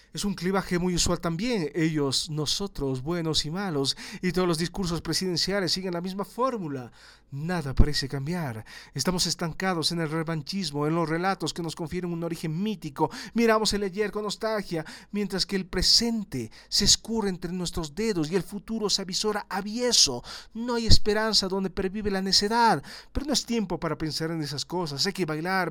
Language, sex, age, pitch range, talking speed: Spanish, male, 40-59, 170-225 Hz, 175 wpm